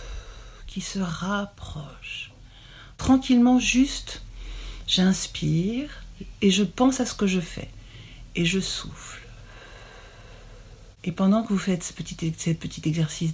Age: 60-79